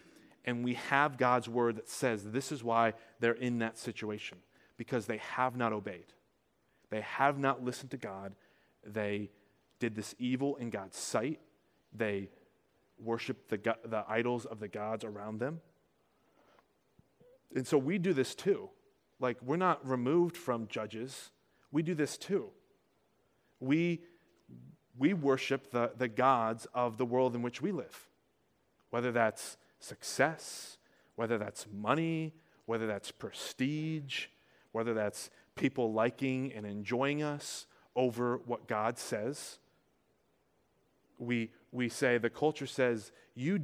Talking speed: 135 wpm